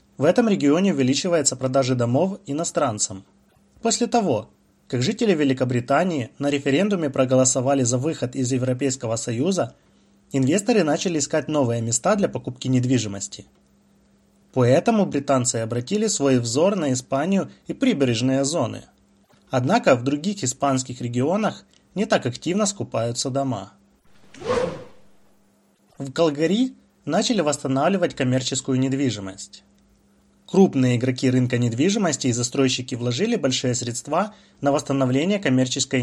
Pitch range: 125-160 Hz